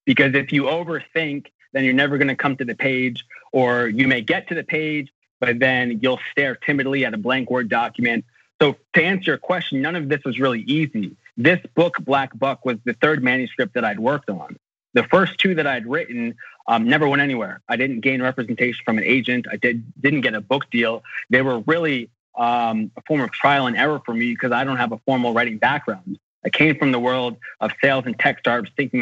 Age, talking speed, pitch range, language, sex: 30-49, 220 wpm, 120-145 Hz, English, male